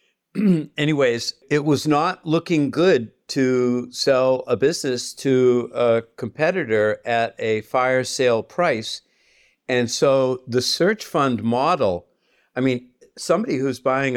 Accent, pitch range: American, 120-145 Hz